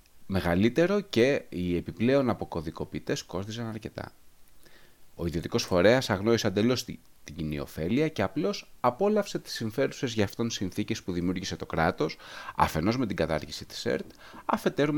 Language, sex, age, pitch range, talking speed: Greek, male, 30-49, 90-130 Hz, 135 wpm